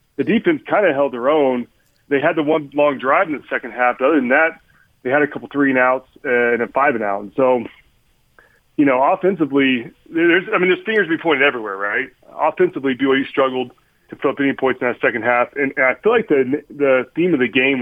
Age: 30-49